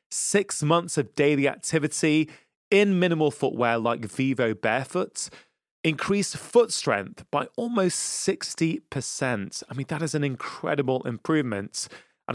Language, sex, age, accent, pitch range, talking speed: English, male, 20-39, British, 120-155 Hz, 120 wpm